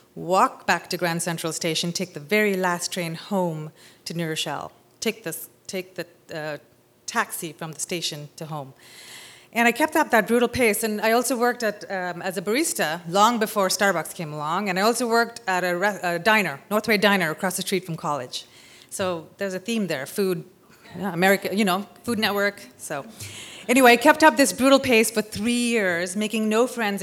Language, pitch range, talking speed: English, 170-215 Hz, 195 wpm